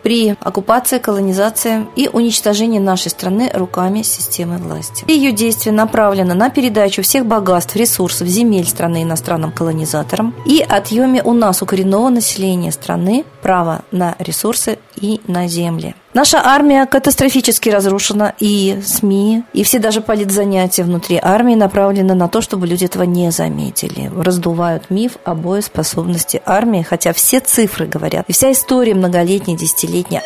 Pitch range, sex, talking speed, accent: 180-240 Hz, female, 135 wpm, native